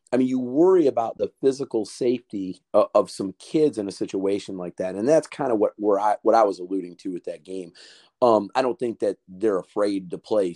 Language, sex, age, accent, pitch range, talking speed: English, male, 30-49, American, 105-155 Hz, 215 wpm